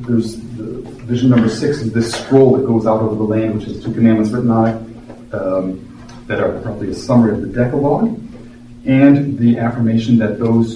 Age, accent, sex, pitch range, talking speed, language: 40-59, American, male, 110-125 Hz, 195 wpm, English